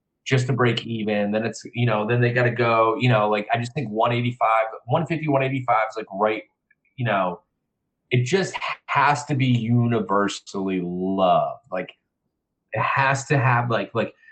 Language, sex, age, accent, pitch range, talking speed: English, male, 20-39, American, 110-135 Hz, 170 wpm